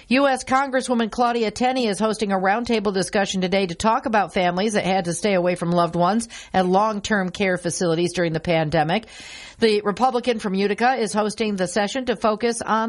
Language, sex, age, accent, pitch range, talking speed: English, female, 50-69, American, 180-230 Hz, 185 wpm